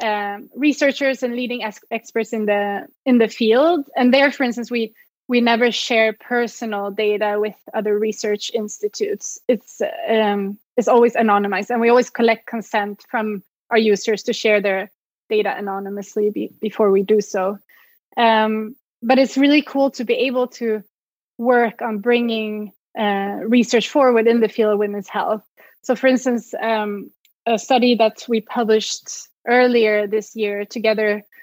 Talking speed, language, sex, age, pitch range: 155 wpm, English, female, 20-39, 215-255 Hz